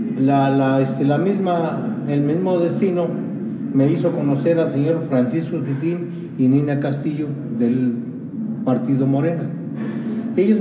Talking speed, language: 125 wpm, Spanish